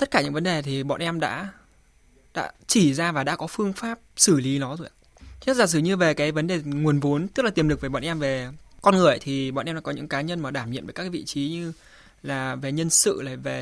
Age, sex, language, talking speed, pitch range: 20-39, male, Vietnamese, 285 wpm, 140-195 Hz